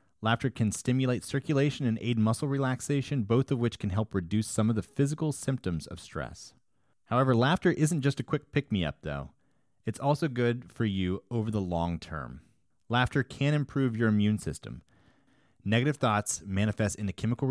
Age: 30-49